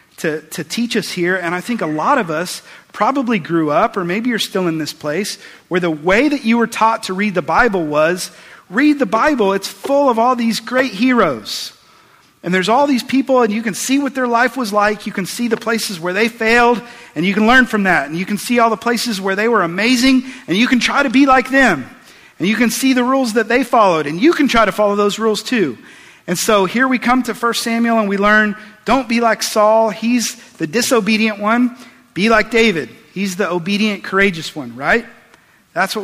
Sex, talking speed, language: male, 230 wpm, English